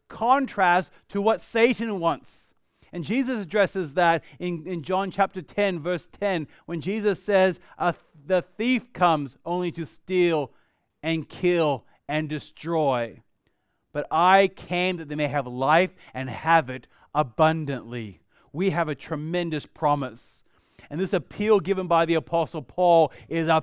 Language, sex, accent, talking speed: English, male, American, 140 wpm